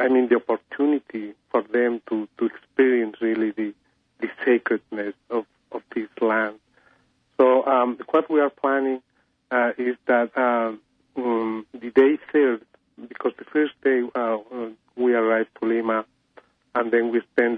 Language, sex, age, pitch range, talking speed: English, male, 40-59, 115-130 Hz, 145 wpm